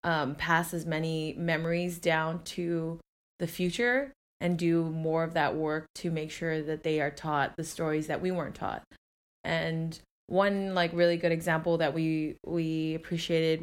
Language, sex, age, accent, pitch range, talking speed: English, female, 20-39, American, 160-185 Hz, 165 wpm